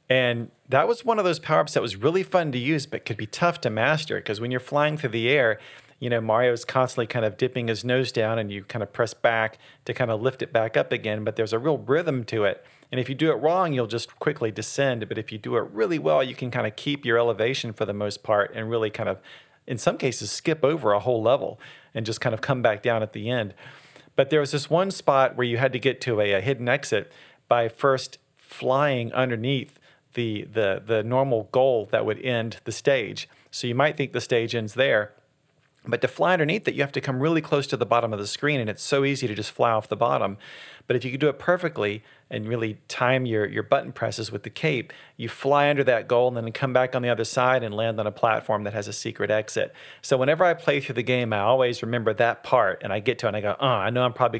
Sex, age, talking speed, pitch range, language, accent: male, 40-59, 265 wpm, 110-135 Hz, English, American